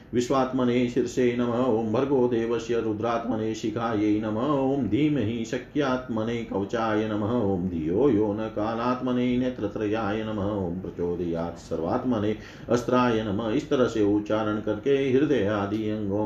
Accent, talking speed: native, 105 wpm